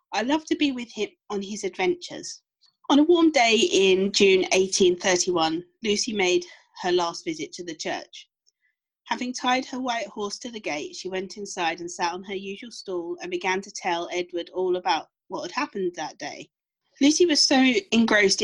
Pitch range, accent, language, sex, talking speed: 185-270 Hz, British, English, female, 185 wpm